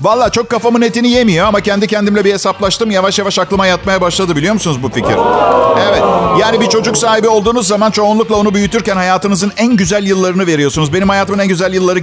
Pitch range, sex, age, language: 185-235 Hz, male, 50-69, Turkish